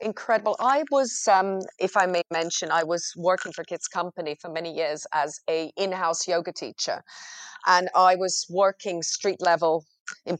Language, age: English, 30-49